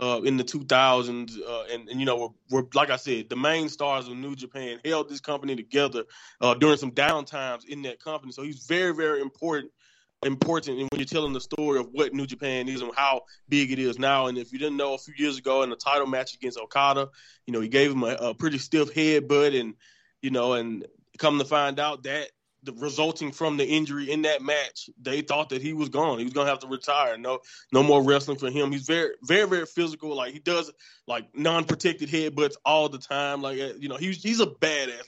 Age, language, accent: 20-39, English, American